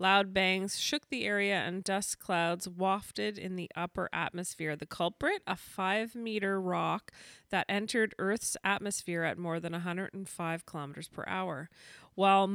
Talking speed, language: 145 wpm, English